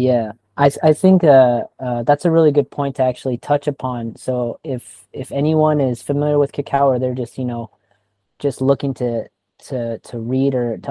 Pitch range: 120-145 Hz